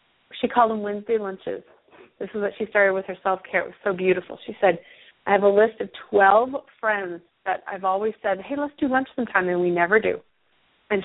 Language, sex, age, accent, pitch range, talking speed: English, female, 30-49, American, 195-265 Hz, 215 wpm